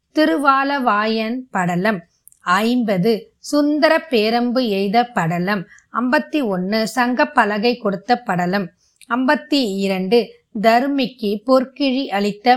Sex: female